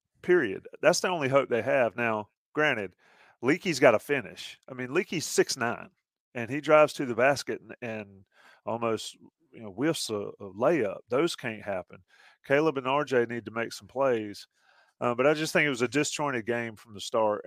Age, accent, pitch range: 40-59, American, 110-150 Hz